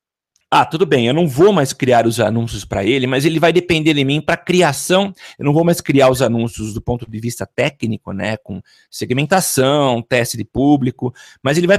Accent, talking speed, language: Brazilian, 210 wpm, Portuguese